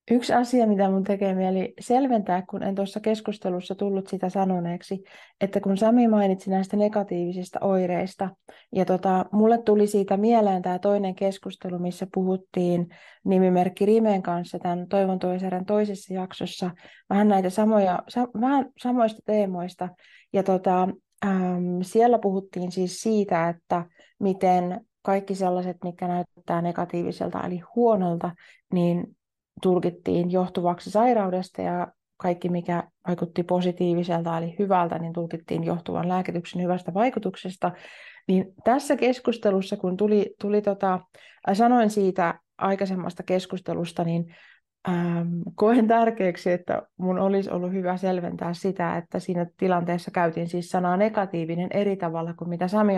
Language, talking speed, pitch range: Finnish, 130 wpm, 175-200 Hz